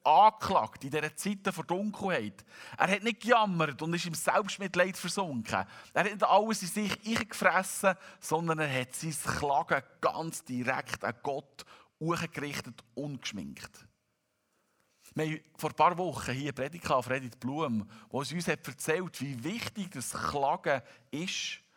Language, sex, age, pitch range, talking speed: German, male, 50-69, 125-180 Hz, 145 wpm